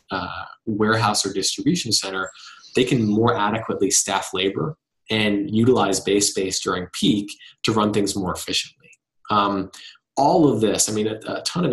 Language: English